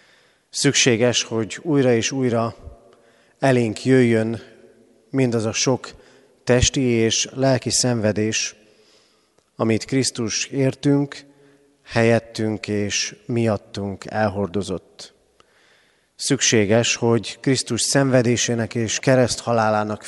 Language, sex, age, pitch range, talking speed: Hungarian, male, 30-49, 110-130 Hz, 80 wpm